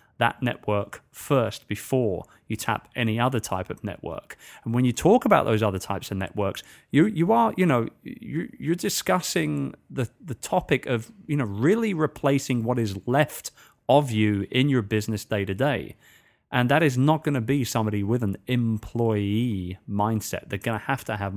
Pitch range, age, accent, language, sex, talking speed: 105-130 Hz, 30-49, British, English, male, 185 wpm